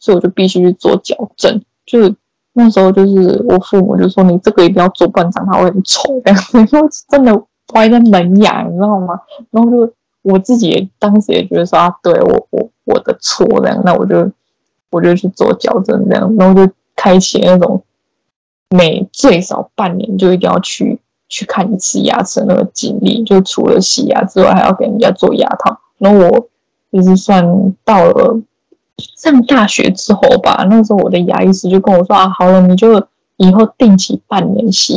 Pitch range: 185-245 Hz